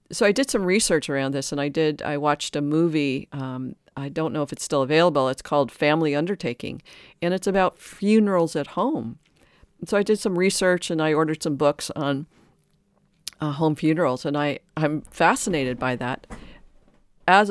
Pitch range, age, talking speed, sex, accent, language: 140-170 Hz, 50-69, 185 wpm, female, American, English